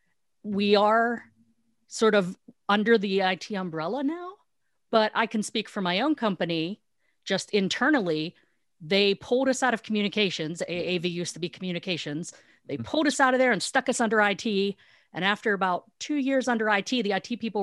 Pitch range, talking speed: 180-235 Hz, 175 wpm